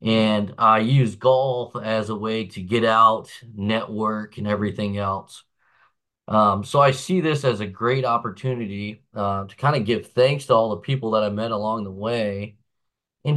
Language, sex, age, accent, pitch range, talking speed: English, male, 20-39, American, 105-130 Hz, 180 wpm